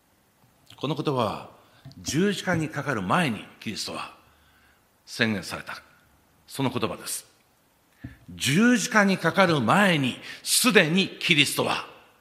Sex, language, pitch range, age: male, Japanese, 145-225 Hz, 50-69